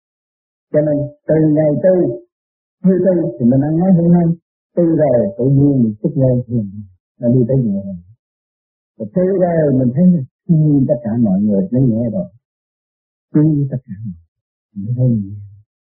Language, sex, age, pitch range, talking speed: Vietnamese, male, 50-69, 120-175 Hz, 135 wpm